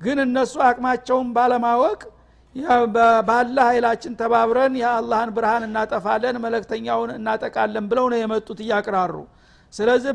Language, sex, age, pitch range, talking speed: Amharic, male, 60-79, 220-250 Hz, 110 wpm